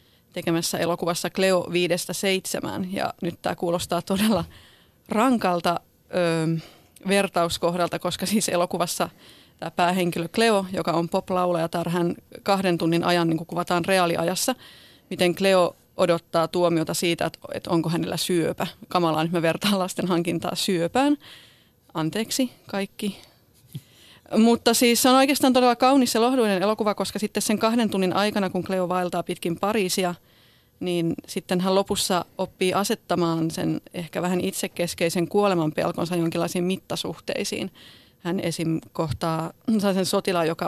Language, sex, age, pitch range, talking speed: Finnish, female, 30-49, 170-195 Hz, 125 wpm